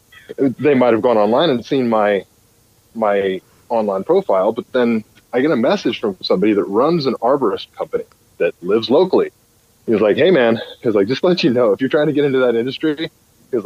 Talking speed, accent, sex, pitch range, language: 215 wpm, American, male, 115-165 Hz, English